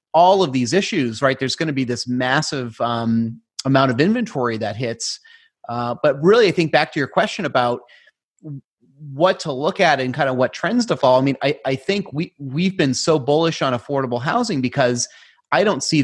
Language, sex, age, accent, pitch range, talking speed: English, male, 30-49, American, 130-160 Hz, 205 wpm